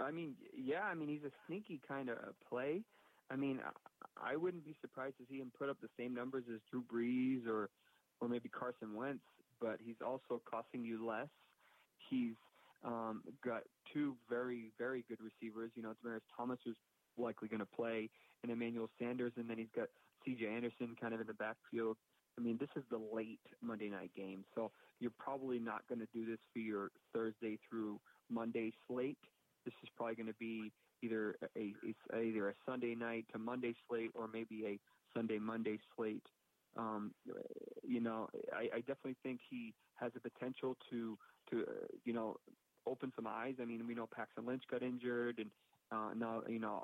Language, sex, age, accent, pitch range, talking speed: English, male, 30-49, American, 110-125 Hz, 195 wpm